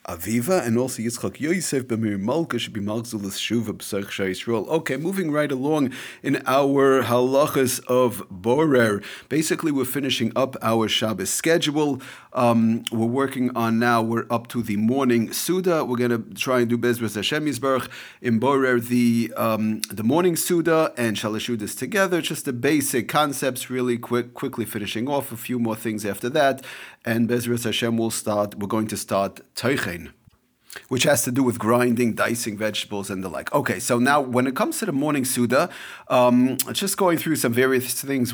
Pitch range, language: 115-135 Hz, English